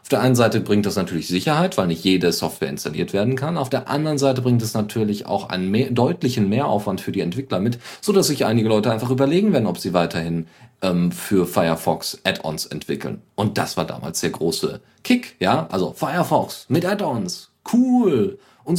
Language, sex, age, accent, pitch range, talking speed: German, male, 40-59, German, 100-140 Hz, 195 wpm